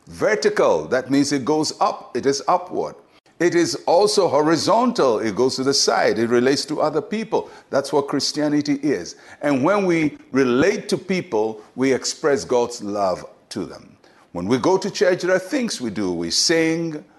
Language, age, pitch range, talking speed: English, 60-79, 140-195 Hz, 180 wpm